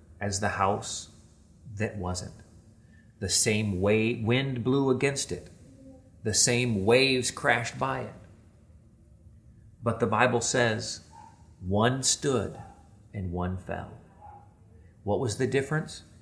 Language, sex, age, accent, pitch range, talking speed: English, male, 30-49, American, 95-115 Hz, 115 wpm